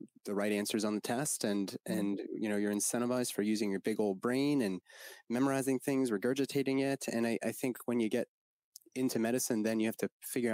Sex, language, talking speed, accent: male, English, 210 wpm, American